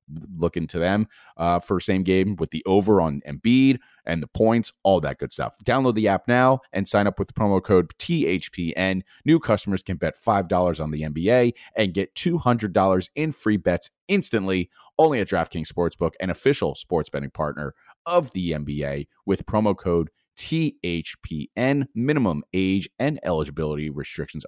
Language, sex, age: English, male, 30-49